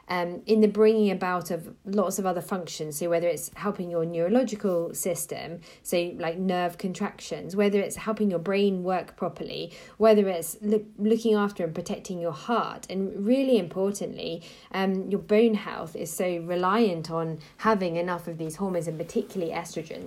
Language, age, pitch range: French, 20-39, 170-215 Hz